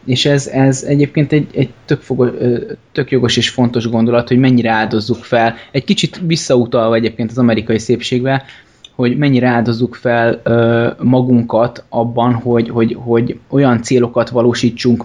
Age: 20-39